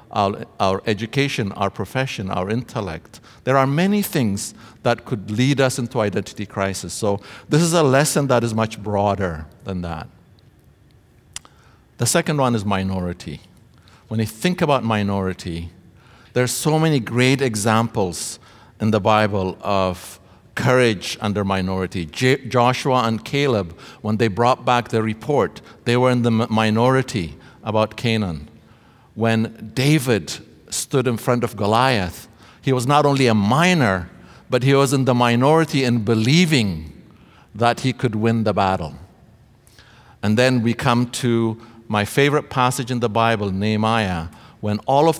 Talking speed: 145 wpm